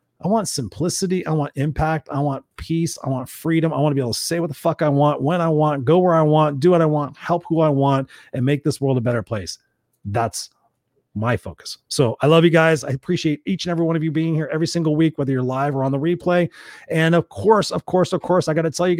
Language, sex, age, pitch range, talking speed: English, male, 30-49, 135-170 Hz, 270 wpm